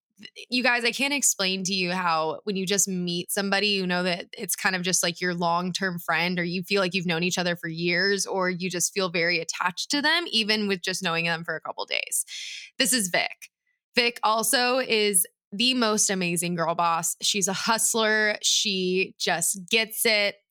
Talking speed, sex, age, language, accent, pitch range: 205 wpm, female, 20-39, English, American, 180-220 Hz